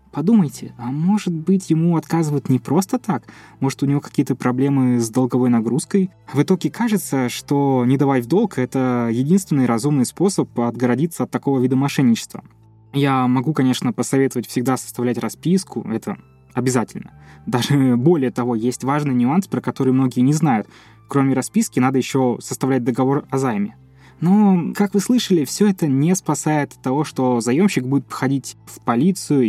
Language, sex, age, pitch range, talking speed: Russian, male, 20-39, 120-165 Hz, 160 wpm